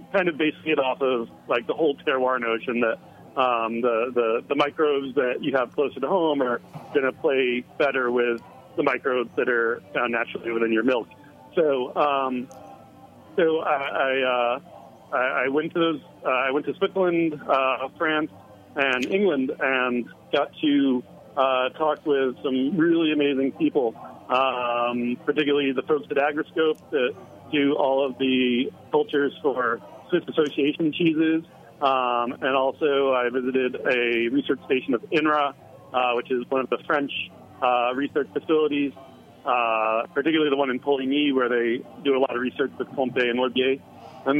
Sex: male